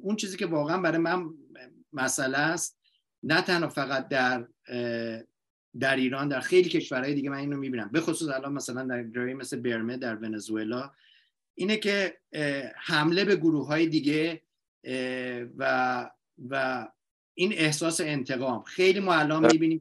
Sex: male